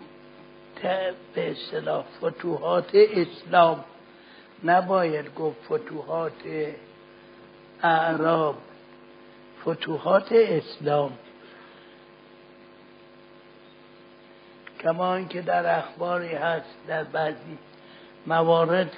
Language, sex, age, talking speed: Persian, male, 60-79, 55 wpm